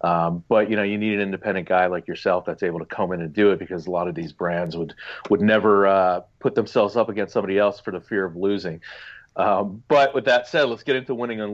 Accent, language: American, English